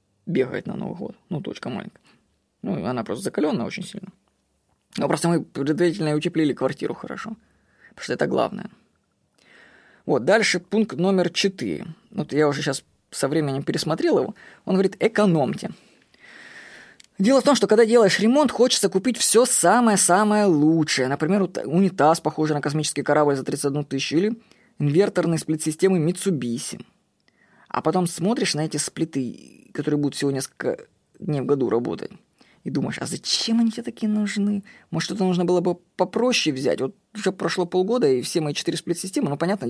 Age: 20-39